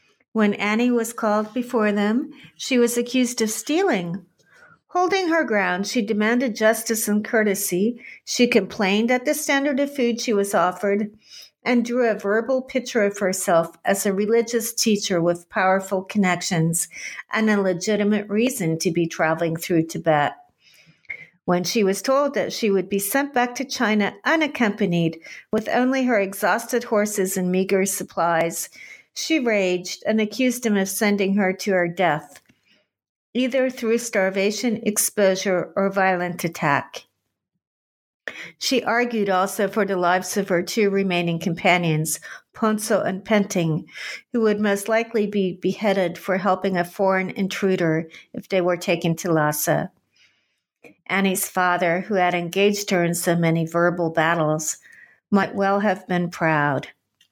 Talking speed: 145 wpm